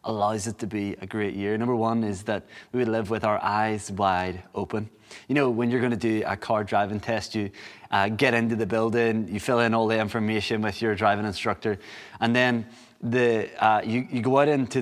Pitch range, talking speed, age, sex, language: 115-140 Hz, 220 wpm, 20-39, male, English